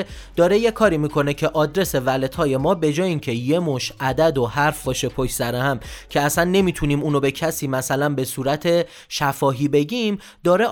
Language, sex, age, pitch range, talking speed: Persian, male, 30-49, 135-190 Hz, 185 wpm